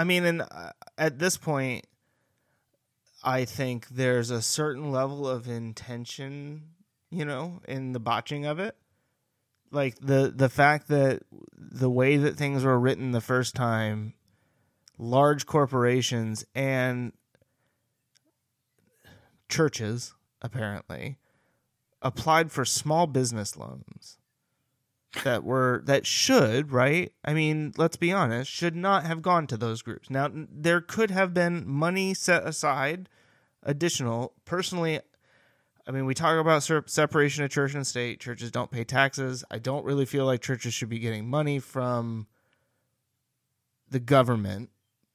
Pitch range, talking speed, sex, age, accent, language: 120-150 Hz, 130 wpm, male, 30-49, American, English